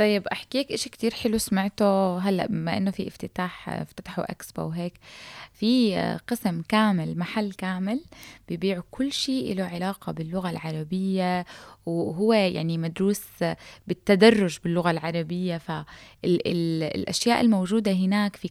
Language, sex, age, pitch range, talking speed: Arabic, female, 20-39, 170-215 Hz, 125 wpm